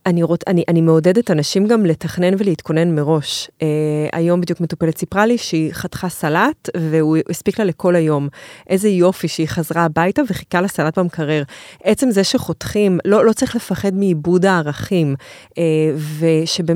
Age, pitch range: 30-49, 165-205 Hz